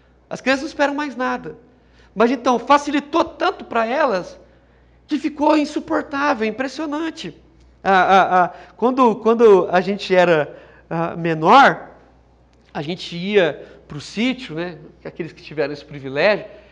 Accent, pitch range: Brazilian, 165-240 Hz